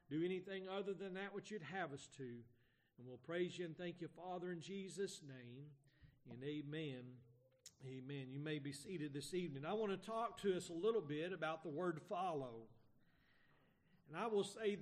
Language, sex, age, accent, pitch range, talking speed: English, male, 40-59, American, 155-195 Hz, 190 wpm